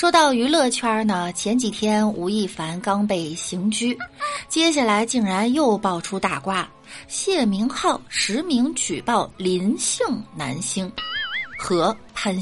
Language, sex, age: Chinese, female, 30-49